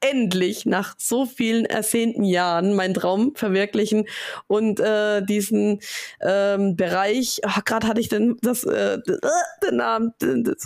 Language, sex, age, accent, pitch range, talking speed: German, female, 20-39, German, 190-230 Hz, 120 wpm